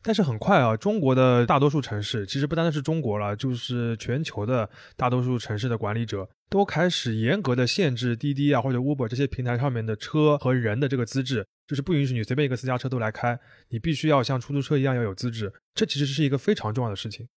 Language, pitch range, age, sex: Chinese, 120-155 Hz, 20-39, male